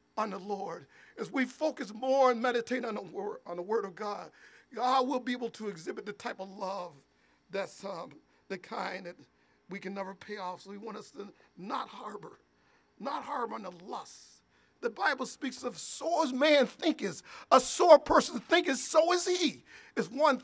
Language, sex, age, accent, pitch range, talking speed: English, male, 50-69, American, 205-255 Hz, 195 wpm